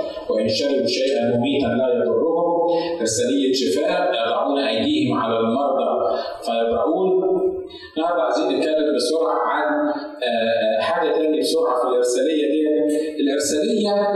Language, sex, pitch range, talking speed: Arabic, male, 135-210 Hz, 105 wpm